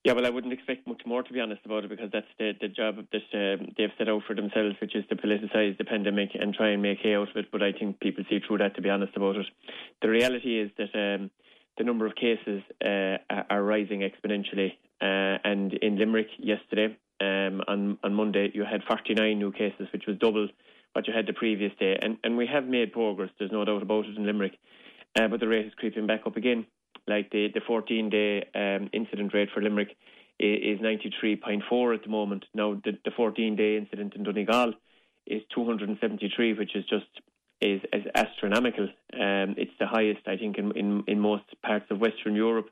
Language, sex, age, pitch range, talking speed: English, male, 20-39, 100-110 Hz, 210 wpm